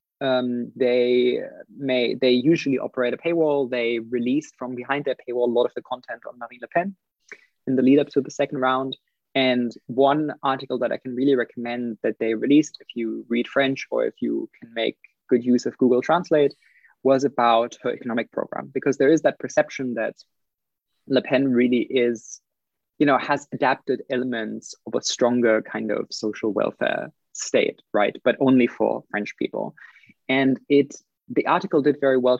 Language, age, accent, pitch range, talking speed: English, 20-39, German, 125-145 Hz, 180 wpm